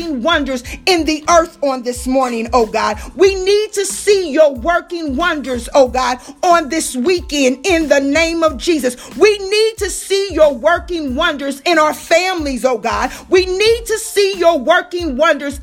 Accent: American